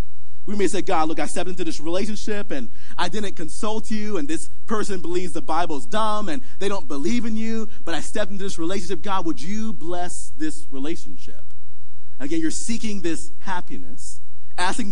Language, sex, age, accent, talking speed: English, male, 30-49, American, 185 wpm